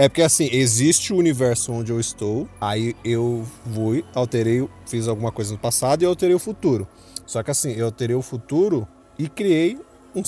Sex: male